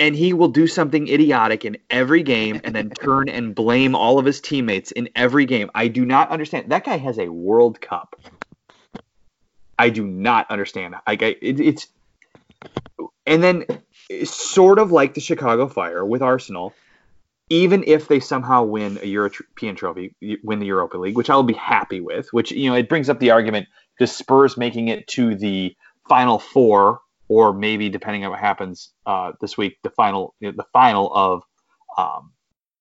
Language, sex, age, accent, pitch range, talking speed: English, male, 30-49, American, 105-145 Hz, 180 wpm